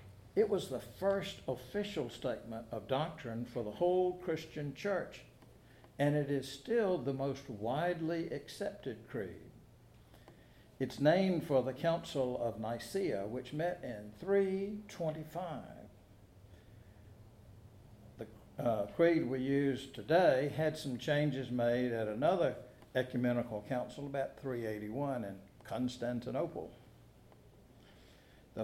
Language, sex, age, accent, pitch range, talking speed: English, male, 60-79, American, 115-175 Hz, 105 wpm